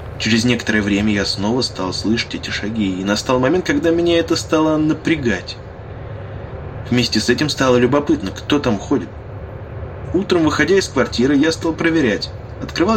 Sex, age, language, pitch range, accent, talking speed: male, 20-39, Russian, 105-150 Hz, native, 155 wpm